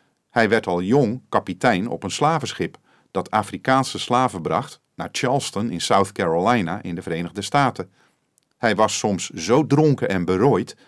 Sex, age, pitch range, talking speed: male, 40-59, 90-130 Hz, 155 wpm